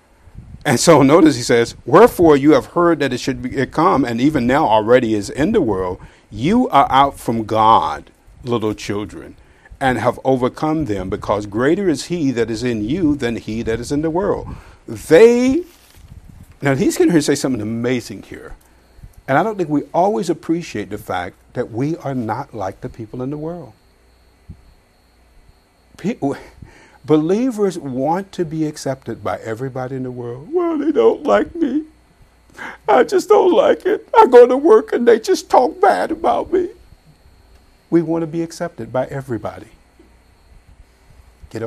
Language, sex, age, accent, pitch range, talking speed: English, male, 50-69, American, 110-170 Hz, 165 wpm